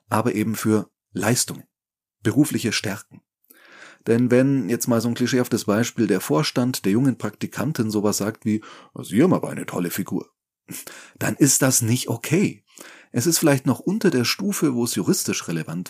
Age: 30-49